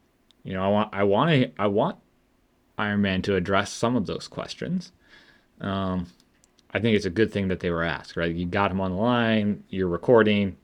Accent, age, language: American, 20-39, English